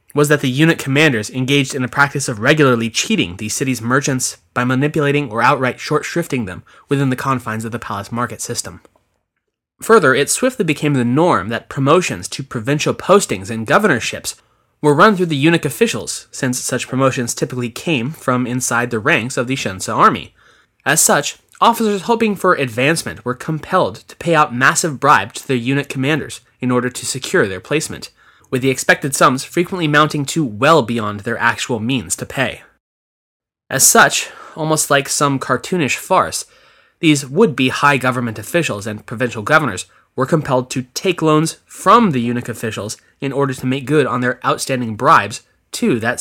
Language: English